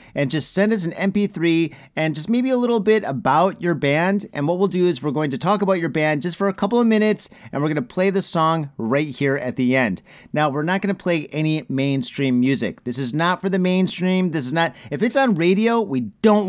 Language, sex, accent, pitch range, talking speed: English, male, American, 140-185 Hz, 250 wpm